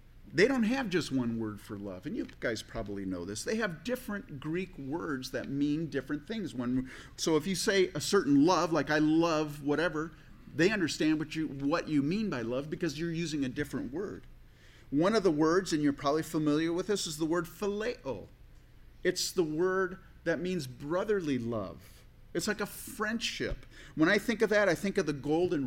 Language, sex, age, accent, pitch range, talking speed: English, male, 40-59, American, 135-180 Hz, 200 wpm